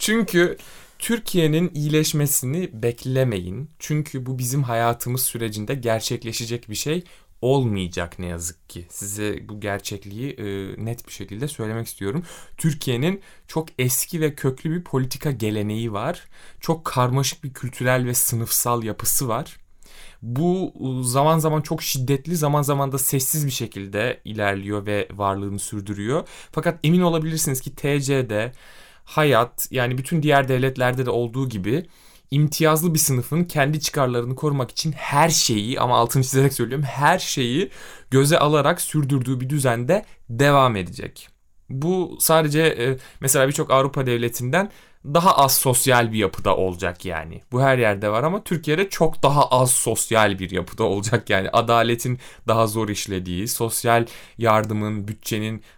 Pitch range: 110-150 Hz